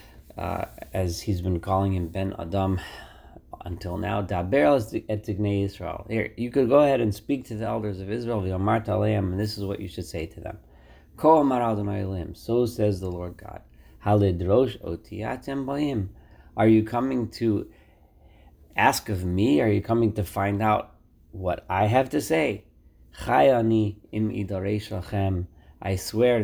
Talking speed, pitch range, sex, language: 140 wpm, 90-115 Hz, male, English